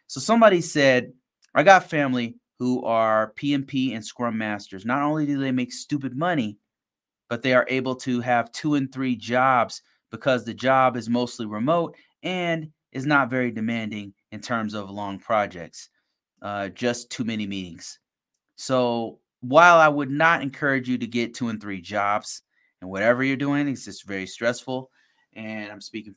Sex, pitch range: male, 105-135 Hz